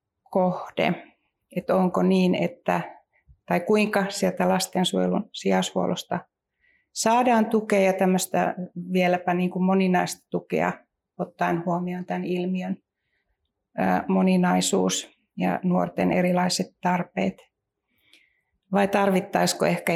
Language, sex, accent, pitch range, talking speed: Finnish, female, native, 170-185 Hz, 95 wpm